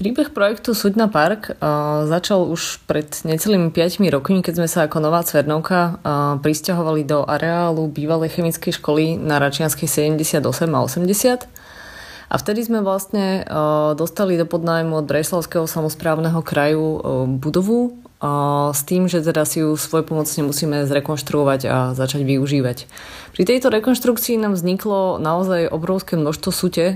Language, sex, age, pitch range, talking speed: Slovak, female, 20-39, 150-180 Hz, 135 wpm